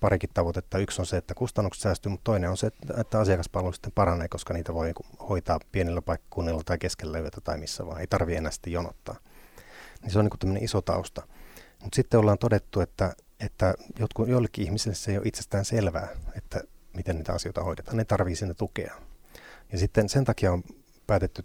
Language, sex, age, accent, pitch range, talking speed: Finnish, male, 30-49, native, 90-105 Hz, 195 wpm